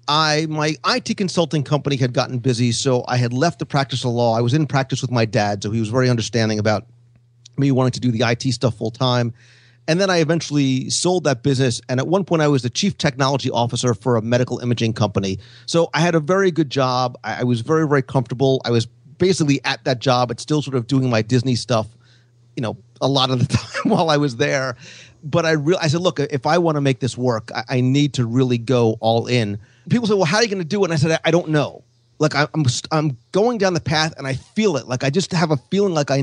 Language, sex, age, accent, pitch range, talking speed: English, male, 40-59, American, 120-155 Hz, 255 wpm